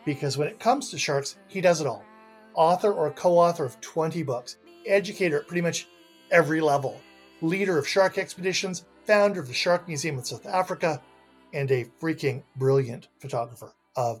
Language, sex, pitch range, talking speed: English, male, 135-195 Hz, 170 wpm